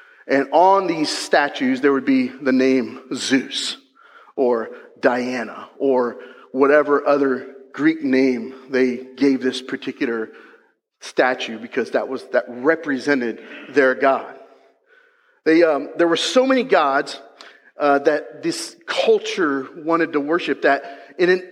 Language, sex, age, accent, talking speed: English, male, 40-59, American, 130 wpm